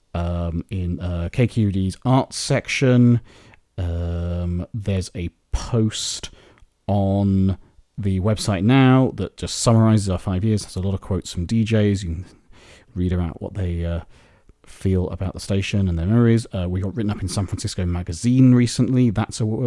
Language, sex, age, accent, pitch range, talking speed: English, male, 30-49, British, 90-110 Hz, 160 wpm